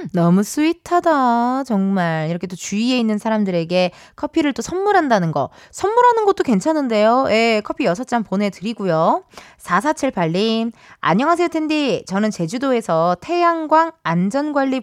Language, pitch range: Korean, 195-300 Hz